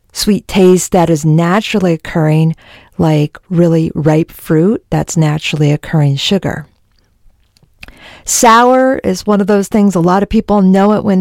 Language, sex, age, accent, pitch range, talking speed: English, female, 50-69, American, 160-200 Hz, 145 wpm